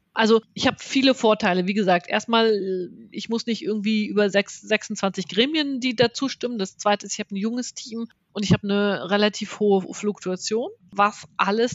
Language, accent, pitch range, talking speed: German, German, 195-230 Hz, 180 wpm